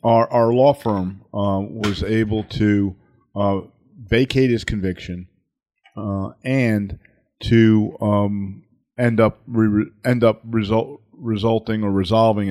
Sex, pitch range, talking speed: male, 95-115 Hz, 120 wpm